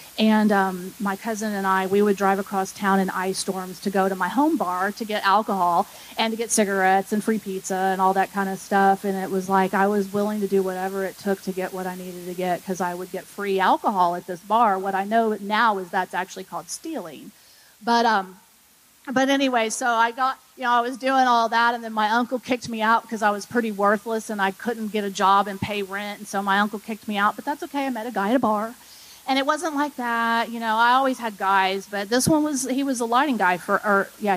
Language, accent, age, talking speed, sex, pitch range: English, American, 30-49, 260 wpm, female, 195-235 Hz